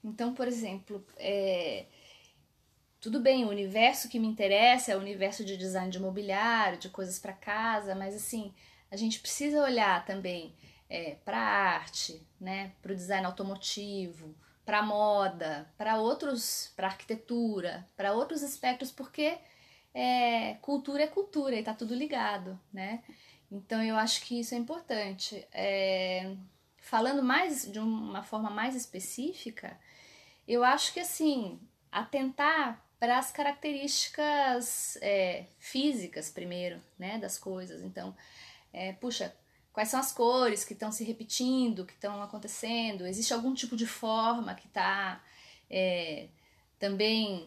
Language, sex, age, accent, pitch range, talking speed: English, female, 20-39, Brazilian, 195-250 Hz, 135 wpm